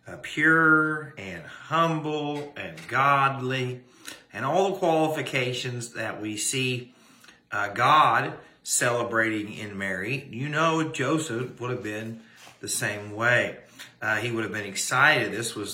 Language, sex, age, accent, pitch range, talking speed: English, male, 50-69, American, 100-130 Hz, 130 wpm